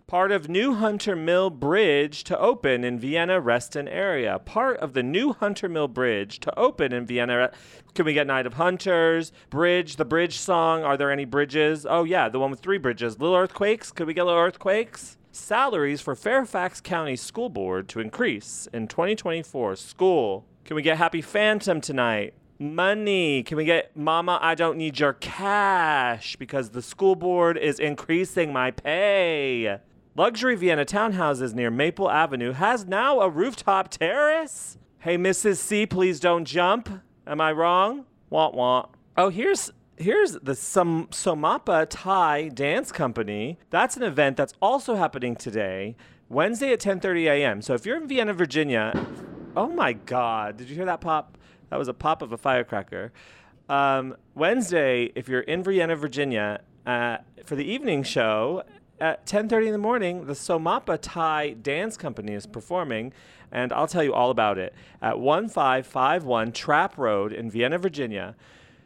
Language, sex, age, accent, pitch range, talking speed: English, male, 30-49, American, 130-185 Hz, 165 wpm